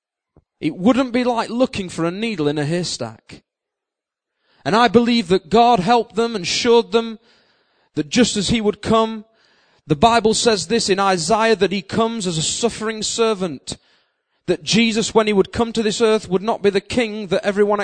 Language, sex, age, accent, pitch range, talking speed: English, male, 30-49, British, 170-225 Hz, 190 wpm